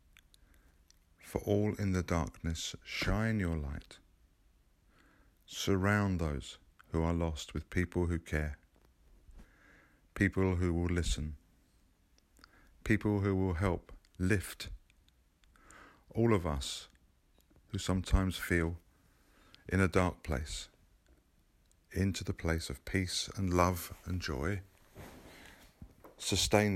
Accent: British